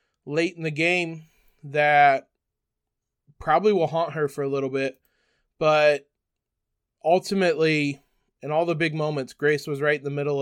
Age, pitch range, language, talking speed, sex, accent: 20-39, 150-185 Hz, English, 150 wpm, male, American